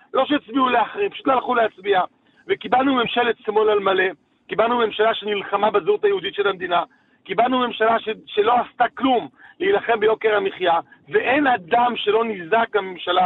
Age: 40-59